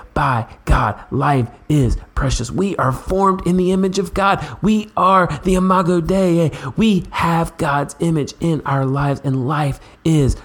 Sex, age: male, 30-49